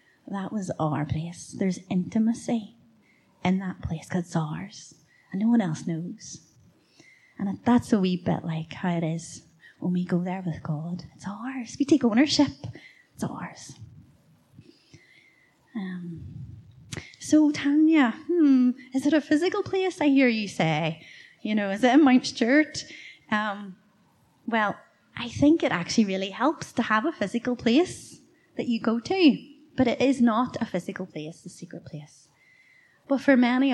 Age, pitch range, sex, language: 30-49, 175-245 Hz, female, English